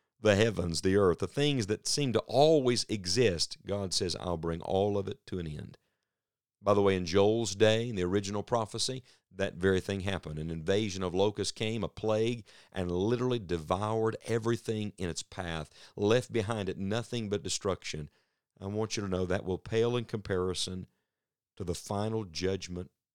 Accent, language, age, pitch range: American, English, 50-69, 95-115 Hz